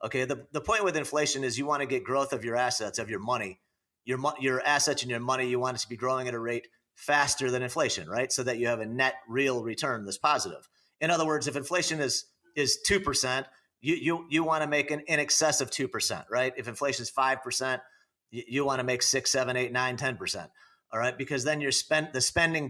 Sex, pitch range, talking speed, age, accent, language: male, 125-145 Hz, 235 wpm, 40-59, American, English